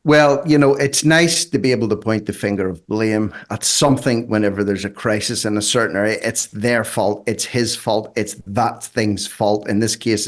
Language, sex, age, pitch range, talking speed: English, male, 50-69, 105-135 Hz, 215 wpm